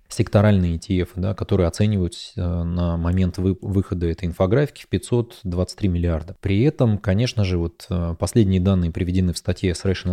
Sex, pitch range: male, 90-105 Hz